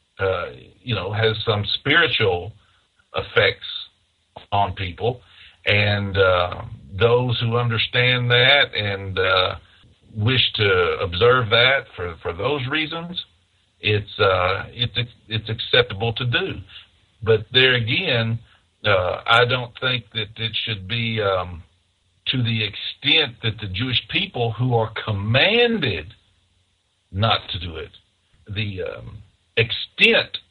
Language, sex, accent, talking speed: English, male, American, 120 wpm